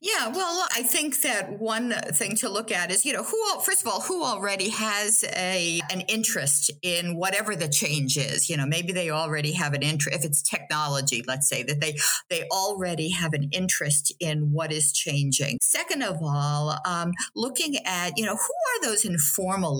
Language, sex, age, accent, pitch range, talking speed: English, female, 50-69, American, 145-210 Hz, 195 wpm